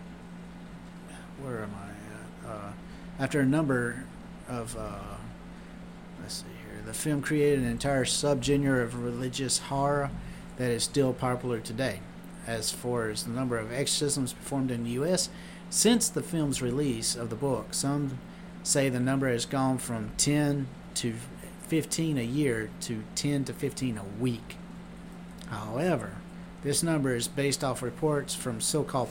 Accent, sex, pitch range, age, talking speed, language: American, male, 125-180 Hz, 50-69, 150 wpm, English